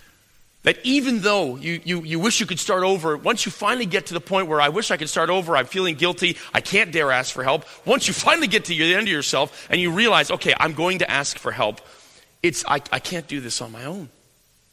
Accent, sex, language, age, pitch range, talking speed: American, male, English, 40-59, 145-185 Hz, 255 wpm